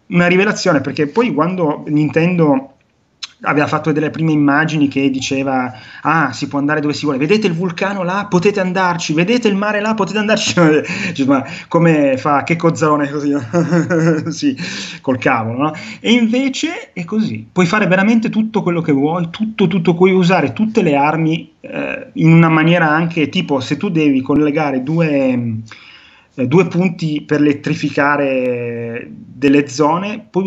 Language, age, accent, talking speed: Italian, 30-49, native, 155 wpm